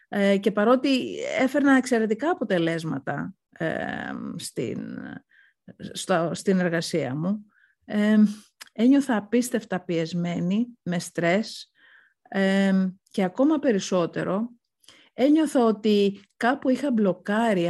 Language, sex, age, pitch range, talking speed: Greek, female, 50-69, 180-240 Hz, 75 wpm